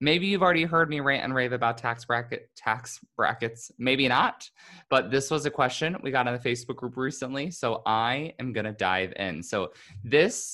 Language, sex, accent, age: English, male, American, 20-39